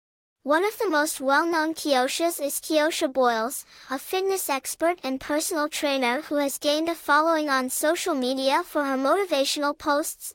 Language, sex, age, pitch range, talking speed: English, male, 10-29, 275-330 Hz, 155 wpm